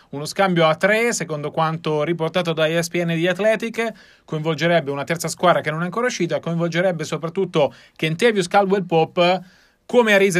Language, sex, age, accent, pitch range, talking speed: Italian, male, 30-49, native, 155-195 Hz, 150 wpm